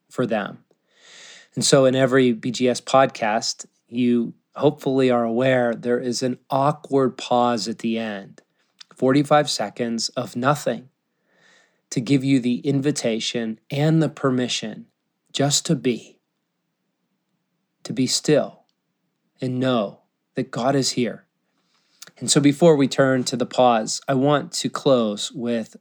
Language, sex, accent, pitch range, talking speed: English, male, American, 120-140 Hz, 135 wpm